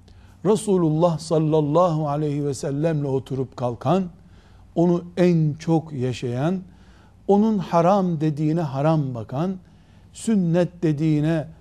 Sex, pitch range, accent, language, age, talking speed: male, 125-170 Hz, native, Turkish, 60-79, 95 wpm